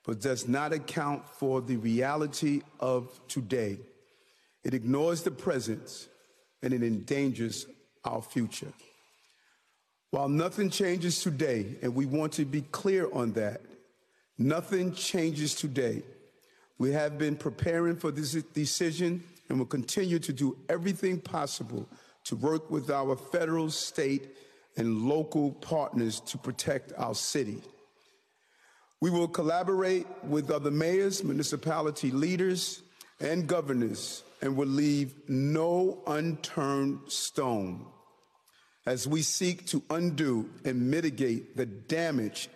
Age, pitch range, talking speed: 40-59, 130-170 Hz, 120 wpm